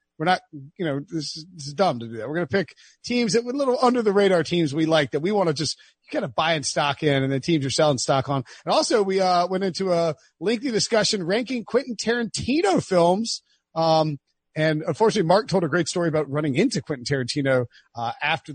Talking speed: 230 wpm